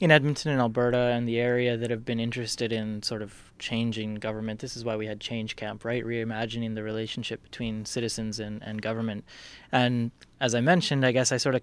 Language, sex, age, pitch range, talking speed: English, male, 20-39, 110-120 Hz, 210 wpm